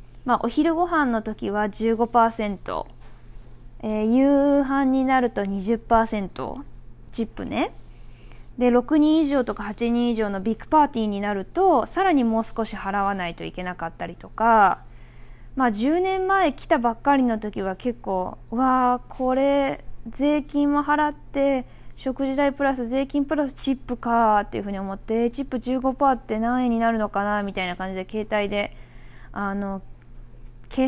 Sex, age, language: female, 20-39, Japanese